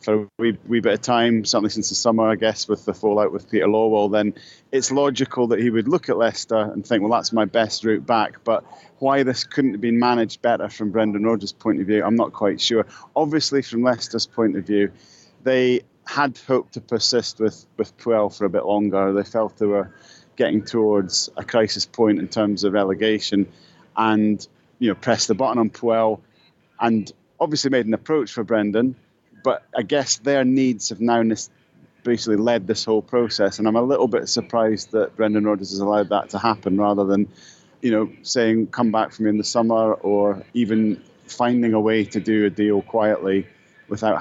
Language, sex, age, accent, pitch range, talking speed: English, male, 30-49, British, 105-120 Hz, 200 wpm